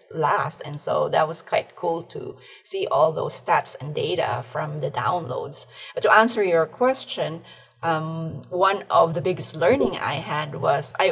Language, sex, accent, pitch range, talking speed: English, female, Filipino, 160-190 Hz, 175 wpm